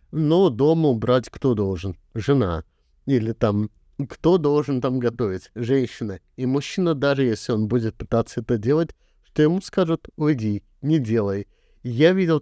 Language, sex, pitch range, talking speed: Russian, male, 105-135 Hz, 145 wpm